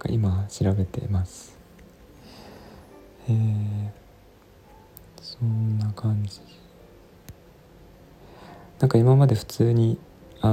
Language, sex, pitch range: Japanese, male, 95-115 Hz